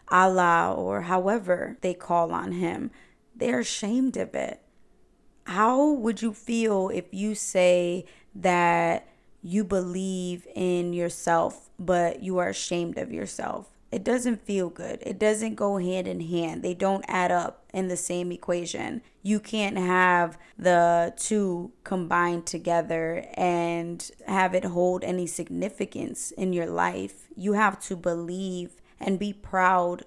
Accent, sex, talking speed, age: American, female, 140 wpm, 20-39